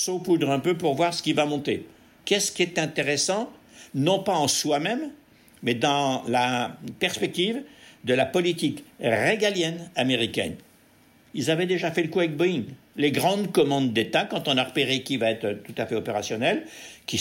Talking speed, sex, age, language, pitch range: 175 wpm, male, 60-79, French, 115-170 Hz